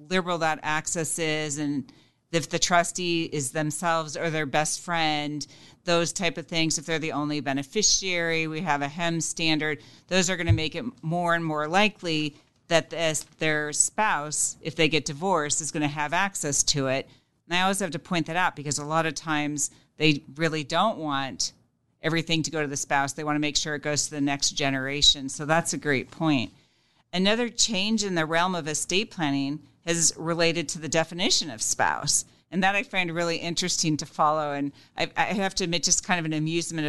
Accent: American